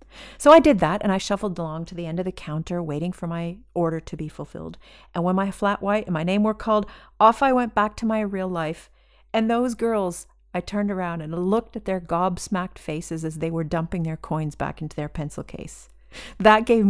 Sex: female